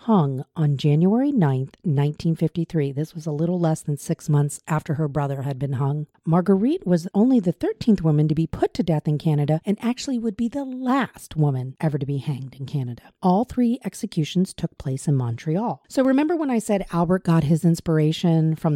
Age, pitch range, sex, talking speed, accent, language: 40-59, 155-215 Hz, female, 200 wpm, American, English